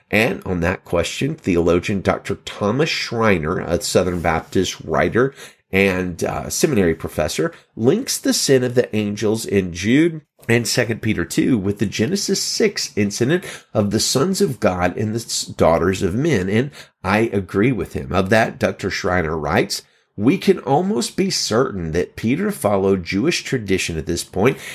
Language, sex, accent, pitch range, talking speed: English, male, American, 90-130 Hz, 160 wpm